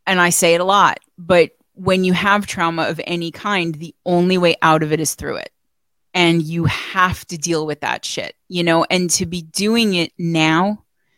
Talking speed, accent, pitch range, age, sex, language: 210 wpm, American, 165-185 Hz, 30-49, female, English